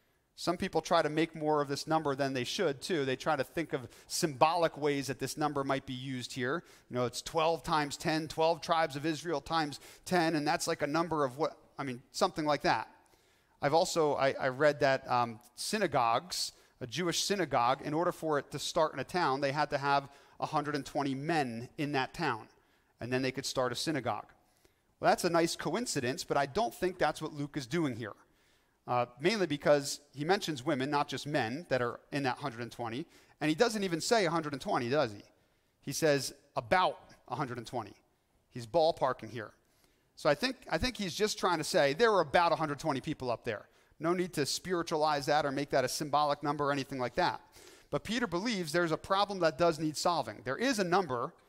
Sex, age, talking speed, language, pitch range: male, 40-59, 205 wpm, English, 135-170 Hz